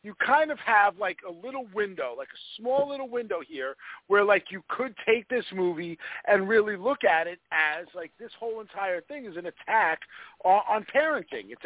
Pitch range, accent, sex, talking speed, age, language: 180-240 Hz, American, male, 195 wpm, 50-69, English